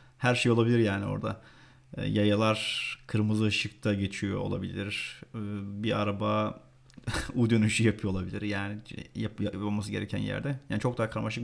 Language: Turkish